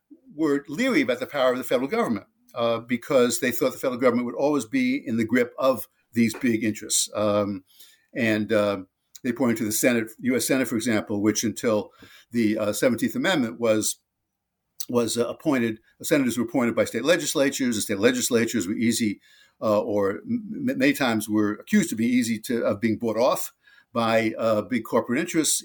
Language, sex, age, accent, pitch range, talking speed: English, male, 60-79, American, 105-170 Hz, 185 wpm